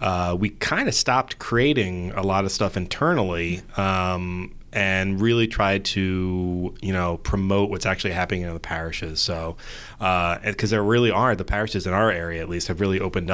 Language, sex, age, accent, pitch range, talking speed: English, male, 30-49, American, 85-105 Hz, 185 wpm